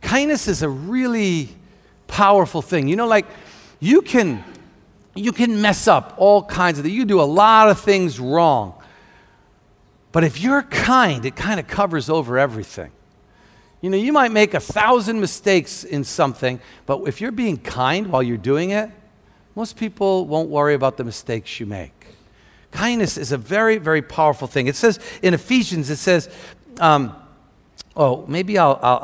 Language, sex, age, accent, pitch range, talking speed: English, male, 50-69, American, 135-205 Hz, 165 wpm